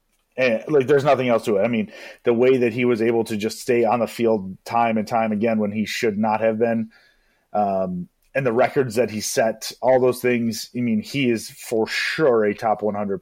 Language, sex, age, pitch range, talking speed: English, male, 30-49, 110-125 Hz, 225 wpm